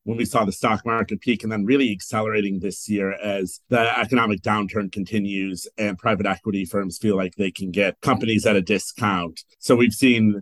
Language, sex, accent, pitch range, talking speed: English, male, American, 105-125 Hz, 195 wpm